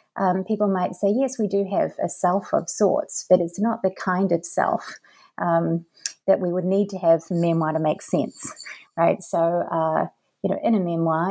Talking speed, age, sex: 205 wpm, 30-49, female